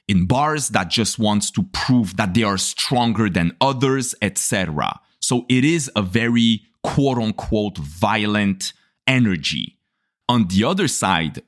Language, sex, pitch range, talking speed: English, male, 95-120 Hz, 135 wpm